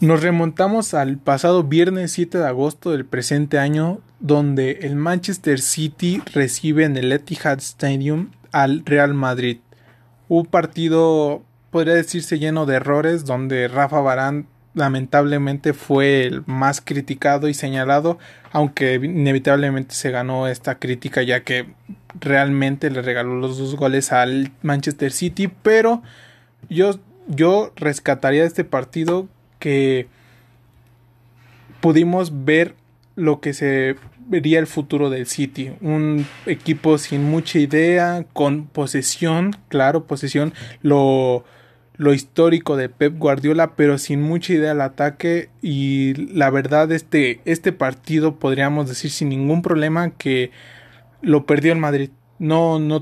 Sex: male